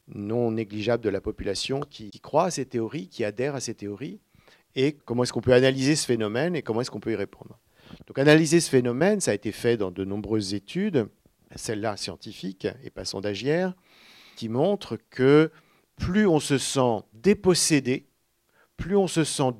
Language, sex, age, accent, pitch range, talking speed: French, male, 50-69, French, 110-145 Hz, 180 wpm